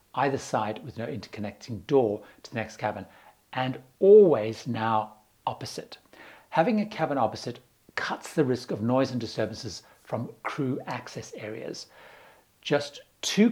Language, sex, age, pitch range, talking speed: English, male, 60-79, 115-150 Hz, 140 wpm